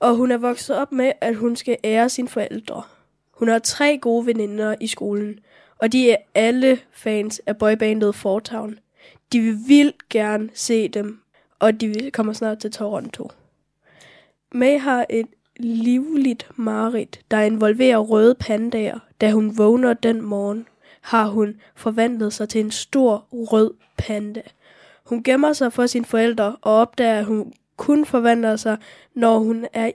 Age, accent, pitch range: 10-29, native, 220-245 Hz